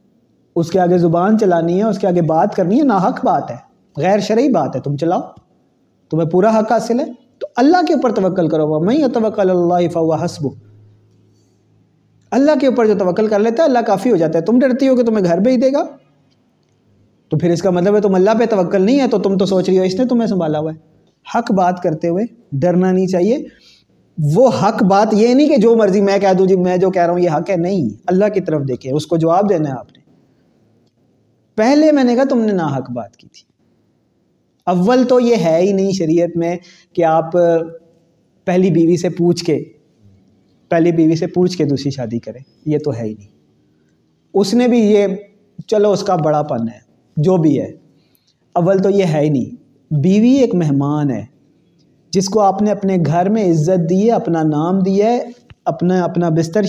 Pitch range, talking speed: 155-210 Hz, 215 wpm